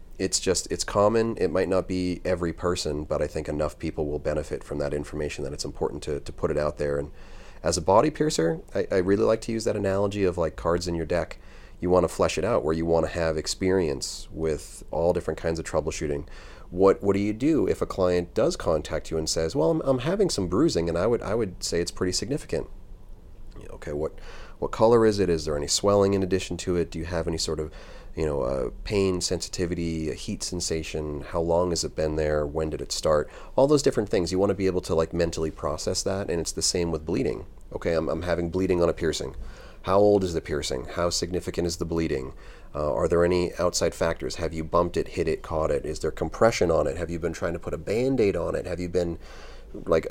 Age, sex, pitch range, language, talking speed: 30-49, male, 80-95 Hz, English, 245 wpm